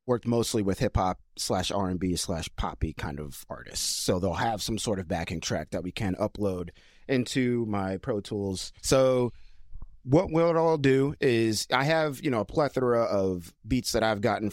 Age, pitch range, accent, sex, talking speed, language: 30-49, 90-115 Hz, American, male, 185 wpm, English